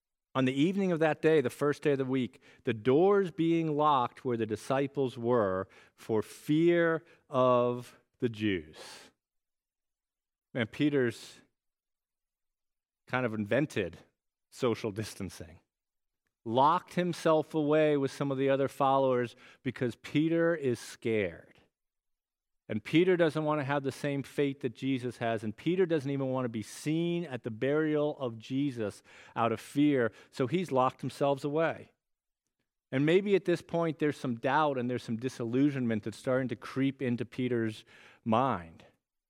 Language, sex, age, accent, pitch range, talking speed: English, male, 40-59, American, 120-150 Hz, 150 wpm